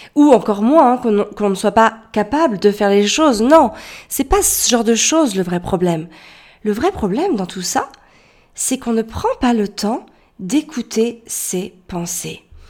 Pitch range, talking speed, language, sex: 210-270 Hz, 185 wpm, French, female